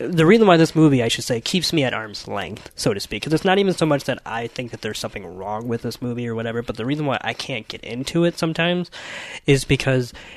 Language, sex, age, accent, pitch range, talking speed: English, male, 20-39, American, 110-145 Hz, 265 wpm